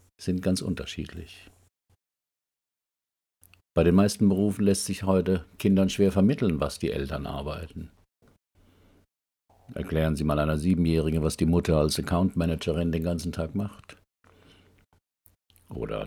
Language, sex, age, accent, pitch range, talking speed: German, male, 50-69, German, 75-95 Hz, 120 wpm